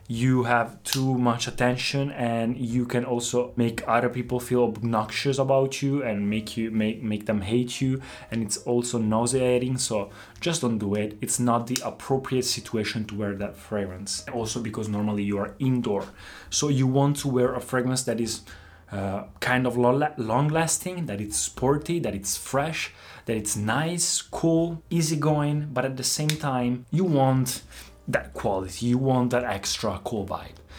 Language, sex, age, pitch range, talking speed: Italian, male, 20-39, 110-135 Hz, 170 wpm